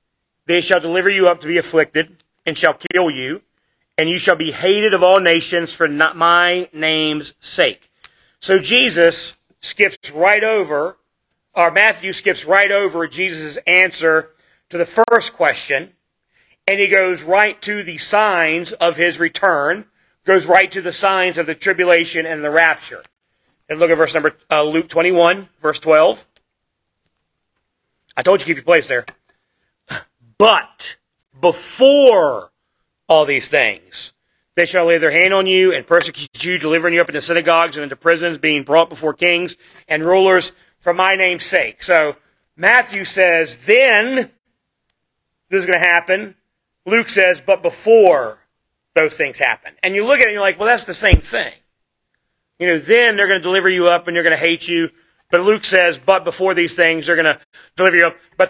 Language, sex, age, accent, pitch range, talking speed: English, male, 40-59, American, 165-190 Hz, 175 wpm